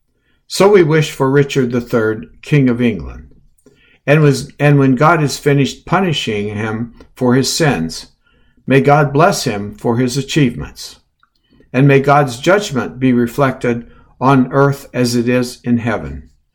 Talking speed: 150 wpm